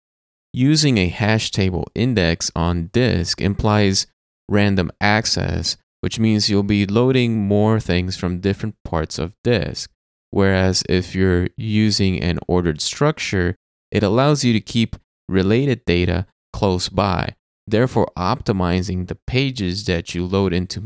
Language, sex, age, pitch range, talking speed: English, male, 20-39, 90-110 Hz, 130 wpm